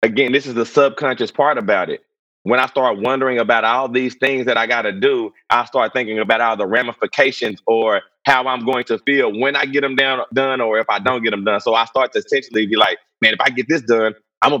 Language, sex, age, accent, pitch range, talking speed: English, male, 30-49, American, 120-140 Hz, 255 wpm